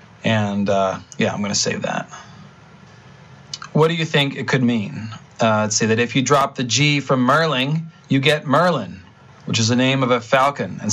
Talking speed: 205 wpm